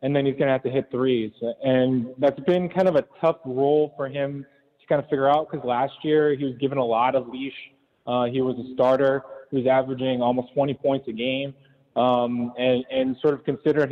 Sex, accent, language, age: male, American, English, 20-39